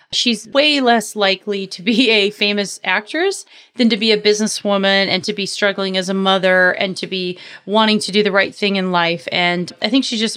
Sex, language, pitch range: female, English, 195-230 Hz